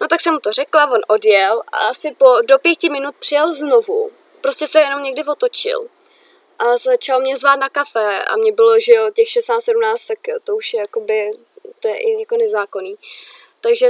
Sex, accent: female, native